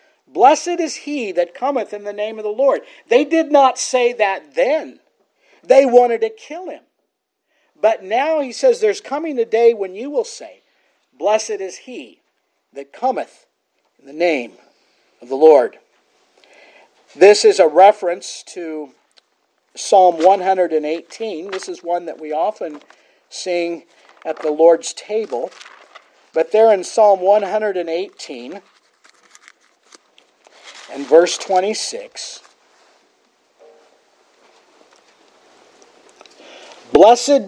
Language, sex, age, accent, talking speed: English, male, 50-69, American, 115 wpm